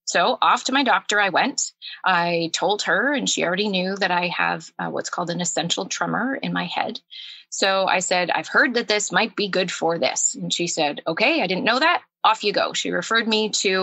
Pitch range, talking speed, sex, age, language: 175-235 Hz, 230 wpm, female, 20-39, English